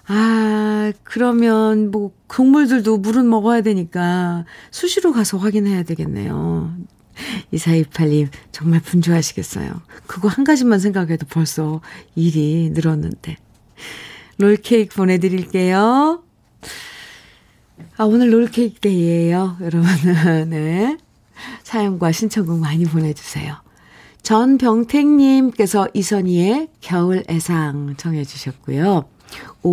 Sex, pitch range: female, 160-220 Hz